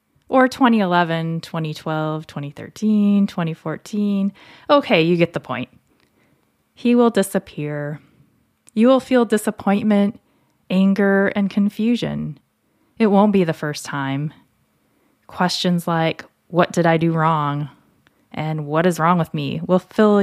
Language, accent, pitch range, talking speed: English, American, 160-205 Hz, 120 wpm